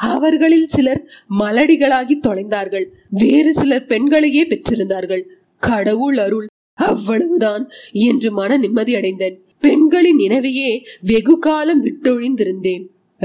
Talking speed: 85 wpm